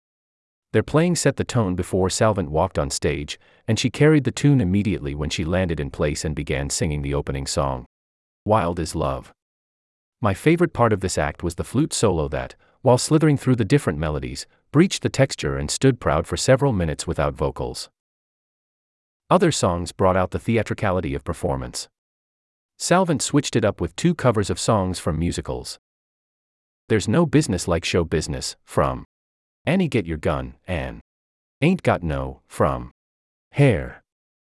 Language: English